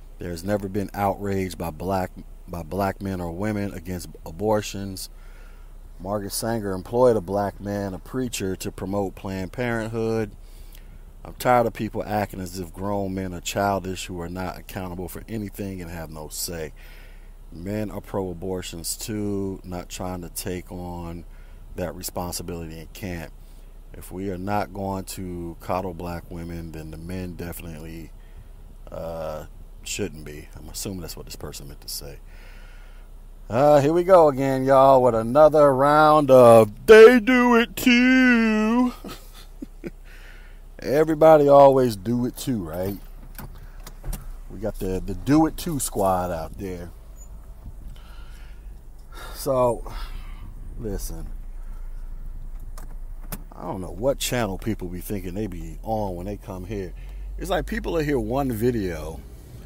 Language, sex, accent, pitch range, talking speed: English, male, American, 85-110 Hz, 140 wpm